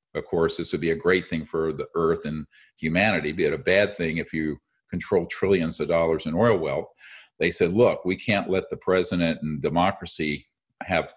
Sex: male